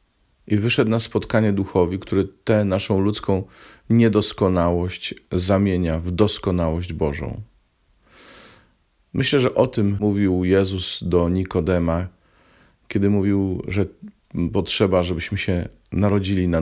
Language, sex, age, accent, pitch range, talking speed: Polish, male, 40-59, native, 90-105 Hz, 110 wpm